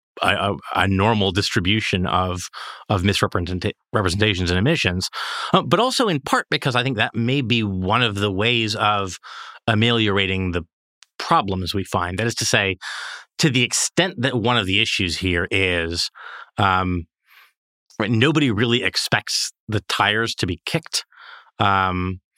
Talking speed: 145 wpm